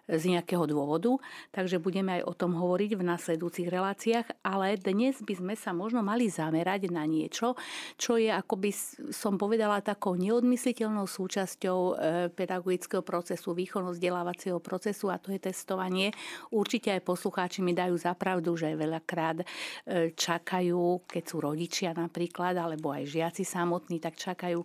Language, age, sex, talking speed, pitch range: Slovak, 50-69, female, 140 wpm, 175-195 Hz